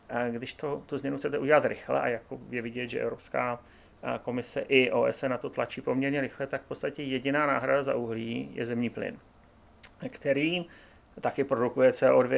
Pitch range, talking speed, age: 125-145 Hz, 170 wpm, 30-49